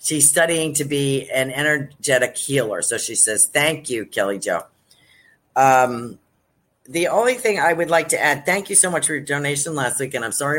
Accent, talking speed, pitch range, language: American, 200 wpm, 125-165 Hz, English